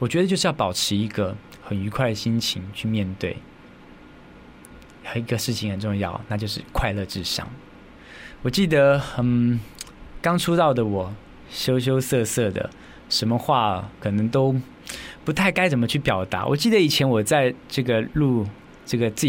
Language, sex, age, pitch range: Chinese, male, 20-39, 105-140 Hz